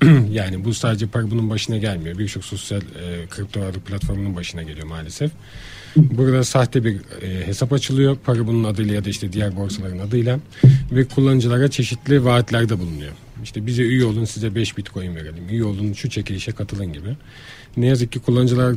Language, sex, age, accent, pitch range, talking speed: Turkish, male, 40-59, native, 105-125 Hz, 175 wpm